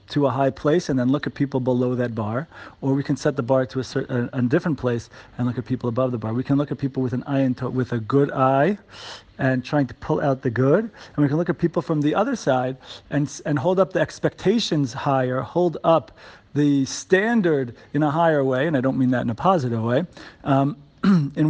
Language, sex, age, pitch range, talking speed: English, male, 40-59, 130-155 Hz, 245 wpm